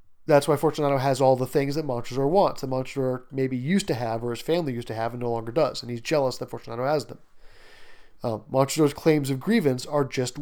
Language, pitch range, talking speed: English, 125-160 Hz, 230 wpm